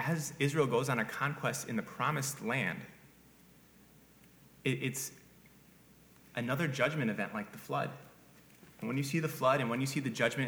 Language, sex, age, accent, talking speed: English, male, 30-49, American, 165 wpm